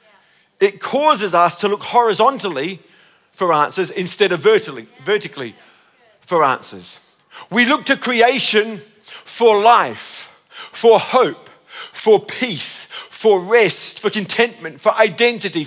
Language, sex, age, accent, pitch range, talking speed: English, male, 50-69, British, 195-250 Hz, 110 wpm